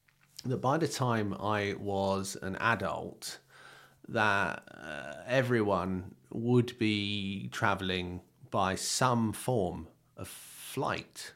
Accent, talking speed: British, 100 wpm